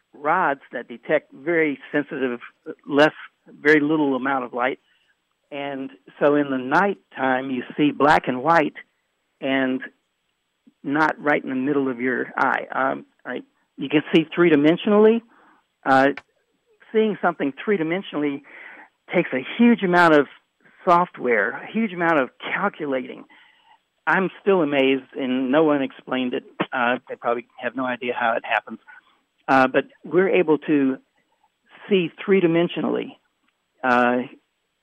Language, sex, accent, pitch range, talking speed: English, male, American, 135-170 Hz, 135 wpm